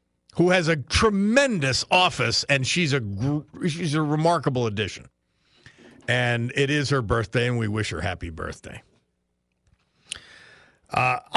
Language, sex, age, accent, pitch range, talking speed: English, male, 50-69, American, 105-145 Hz, 125 wpm